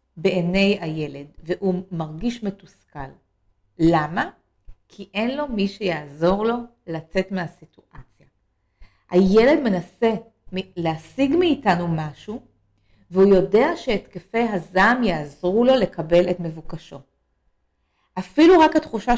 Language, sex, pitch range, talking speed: English, female, 170-235 Hz, 95 wpm